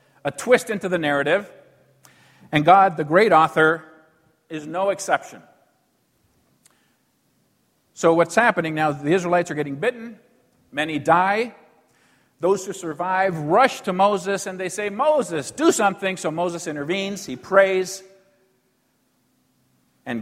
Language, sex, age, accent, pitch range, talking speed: English, male, 50-69, American, 145-195 Hz, 125 wpm